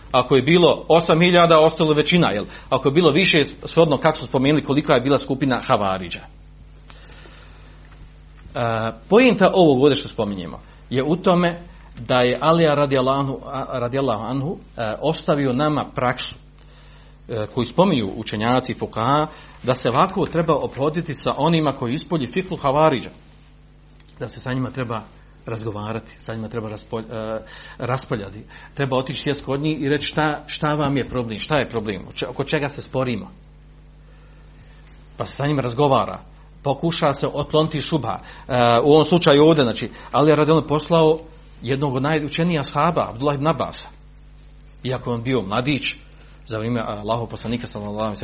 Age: 40-59